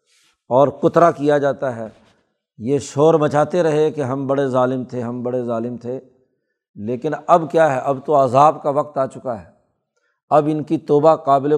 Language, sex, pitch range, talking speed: Urdu, male, 135-160 Hz, 180 wpm